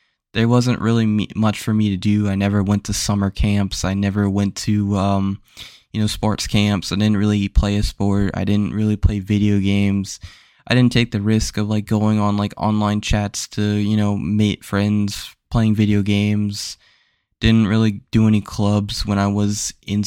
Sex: male